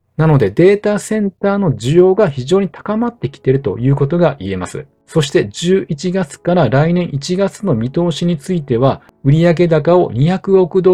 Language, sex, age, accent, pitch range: Japanese, male, 40-59, native, 140-180 Hz